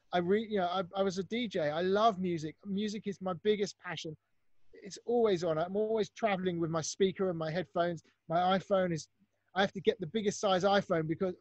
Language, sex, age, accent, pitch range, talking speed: English, male, 30-49, British, 165-205 Hz, 215 wpm